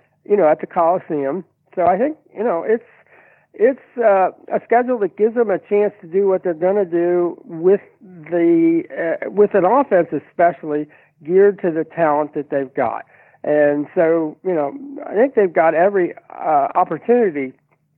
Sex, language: male, English